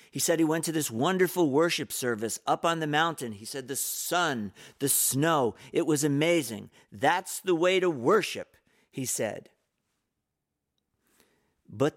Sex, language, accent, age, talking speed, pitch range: male, English, American, 50-69, 150 wpm, 105-170 Hz